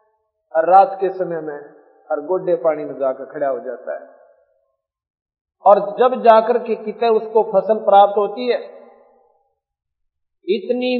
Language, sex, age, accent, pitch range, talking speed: Hindi, male, 50-69, native, 170-235 Hz, 125 wpm